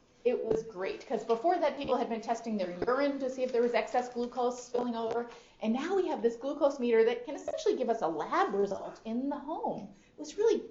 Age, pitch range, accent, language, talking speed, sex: 30-49, 230-320 Hz, American, English, 235 wpm, female